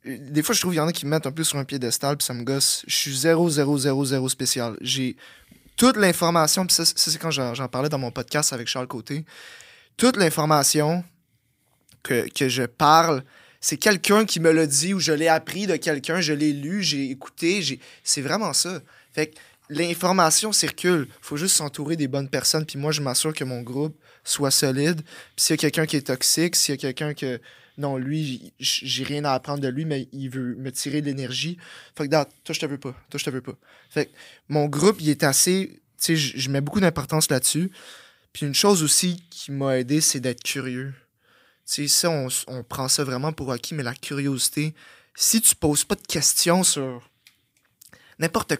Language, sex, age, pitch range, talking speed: French, male, 20-39, 135-165 Hz, 215 wpm